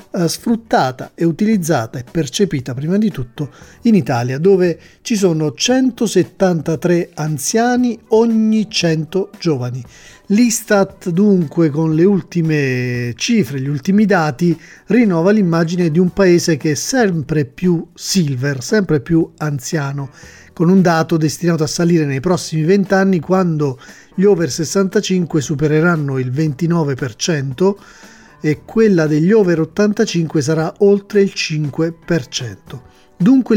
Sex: male